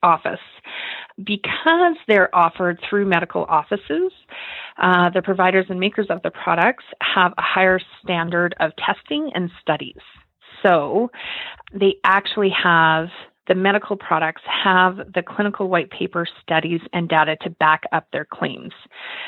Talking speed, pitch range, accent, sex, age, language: 135 wpm, 165-200 Hz, American, female, 30-49, English